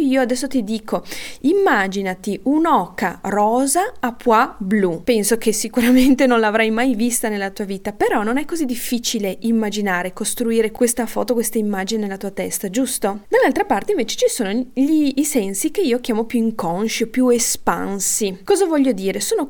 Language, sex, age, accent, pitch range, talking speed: Italian, female, 20-39, native, 205-260 Hz, 165 wpm